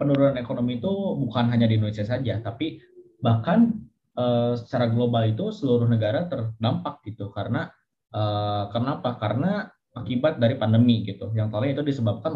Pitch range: 115-150 Hz